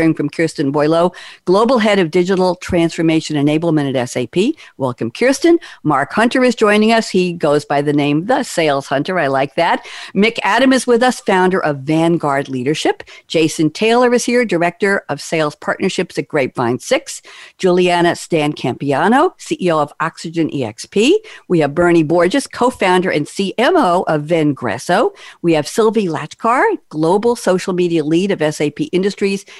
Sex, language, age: female, English, 60-79